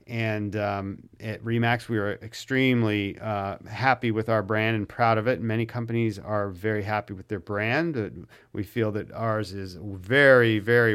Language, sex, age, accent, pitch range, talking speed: English, male, 40-59, American, 105-125 Hz, 170 wpm